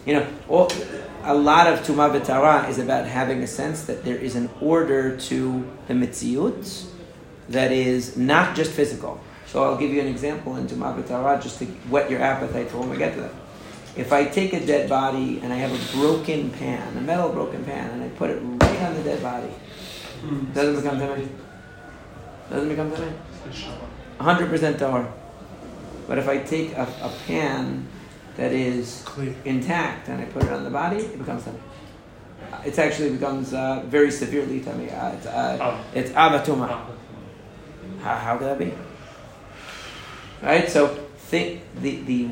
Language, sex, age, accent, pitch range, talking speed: English, male, 40-59, American, 130-155 Hz, 175 wpm